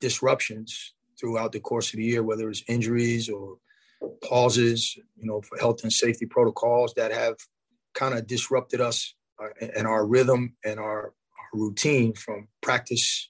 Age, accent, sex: 30-49, American, male